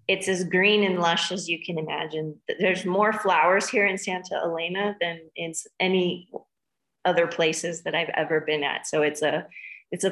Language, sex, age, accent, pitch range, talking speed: English, female, 30-49, American, 155-190 Hz, 185 wpm